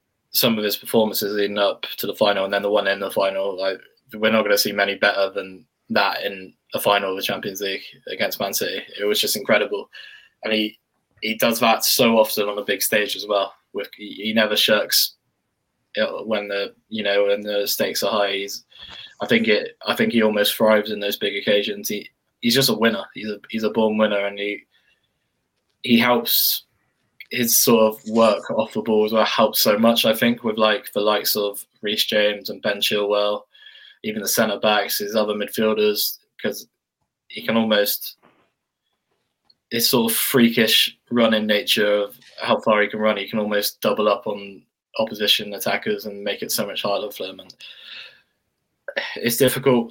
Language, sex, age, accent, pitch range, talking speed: English, male, 10-29, British, 105-115 Hz, 190 wpm